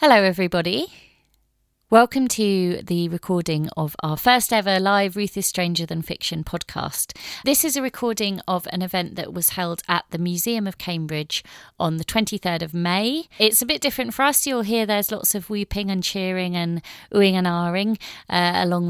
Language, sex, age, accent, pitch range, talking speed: English, female, 30-49, British, 165-205 Hz, 180 wpm